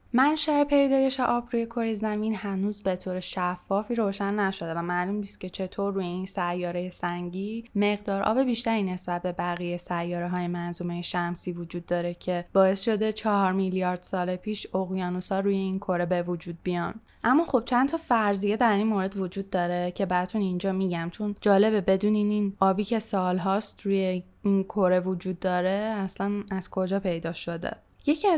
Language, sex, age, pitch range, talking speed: Persian, female, 10-29, 180-225 Hz, 165 wpm